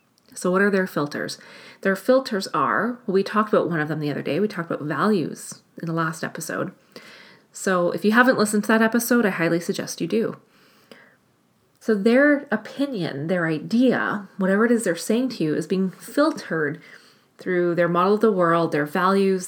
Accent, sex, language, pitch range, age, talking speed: American, female, English, 175-235 Hz, 30-49, 190 wpm